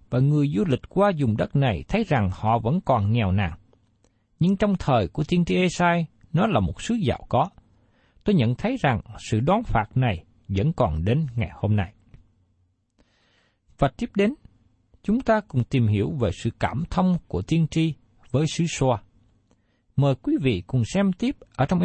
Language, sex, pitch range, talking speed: Vietnamese, male, 110-165 Hz, 185 wpm